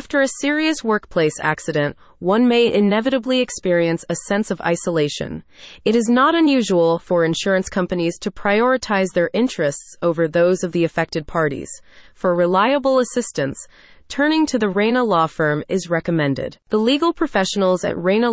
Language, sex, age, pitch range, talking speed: English, female, 30-49, 170-225 Hz, 150 wpm